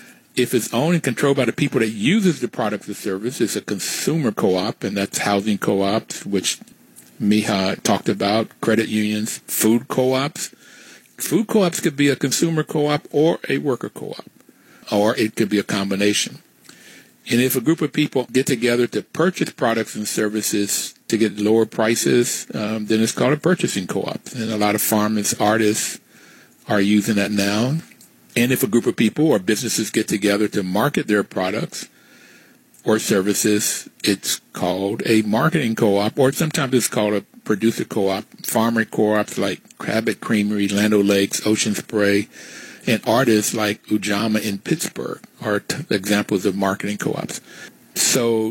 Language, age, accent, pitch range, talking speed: English, 50-69, American, 105-125 Hz, 160 wpm